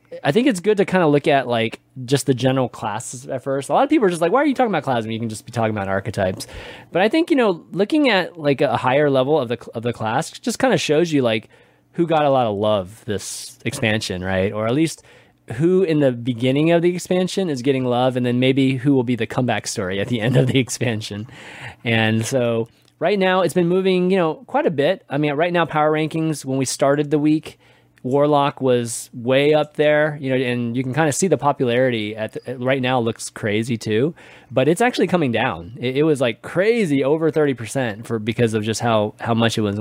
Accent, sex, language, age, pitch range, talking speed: American, male, English, 20-39, 110-150 Hz, 245 wpm